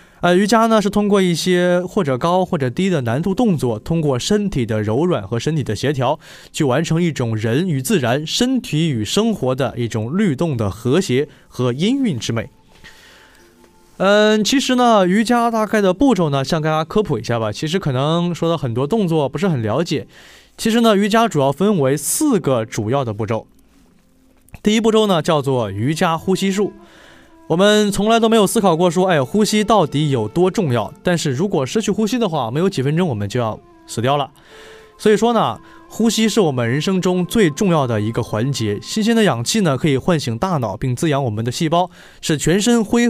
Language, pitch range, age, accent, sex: Chinese, 130-210 Hz, 20-39, native, male